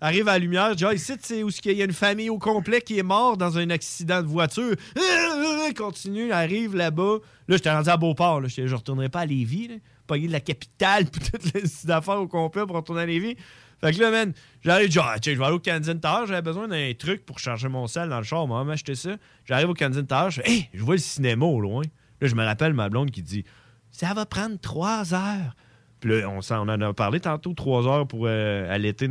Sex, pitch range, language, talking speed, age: male, 125-190 Hz, French, 260 wpm, 30-49